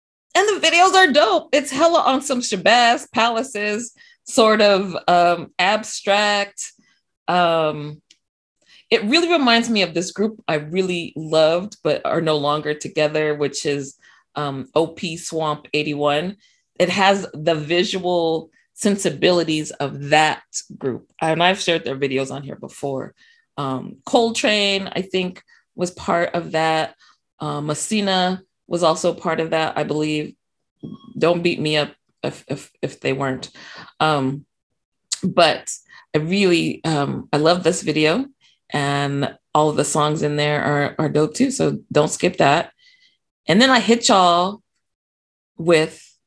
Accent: American